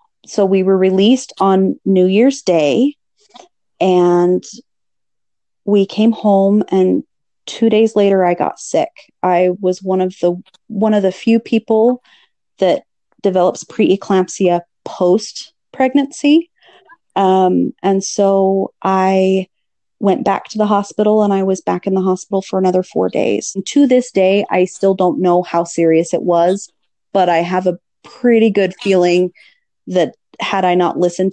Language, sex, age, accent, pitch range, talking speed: English, female, 30-49, American, 180-220 Hz, 150 wpm